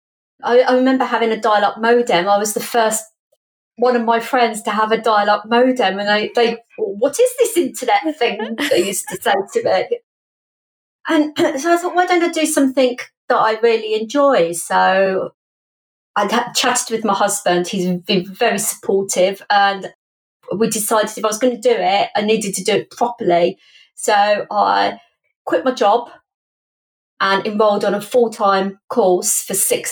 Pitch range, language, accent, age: 195-245 Hz, English, British, 30-49